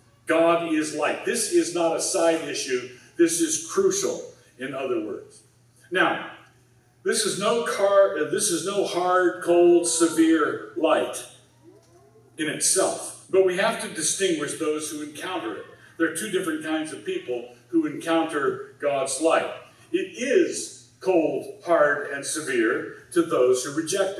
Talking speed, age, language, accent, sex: 140 wpm, 50-69, English, American, male